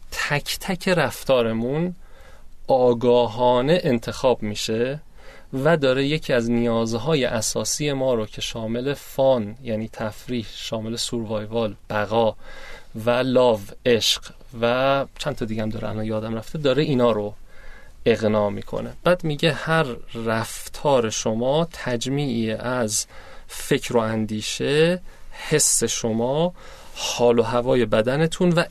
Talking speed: 120 wpm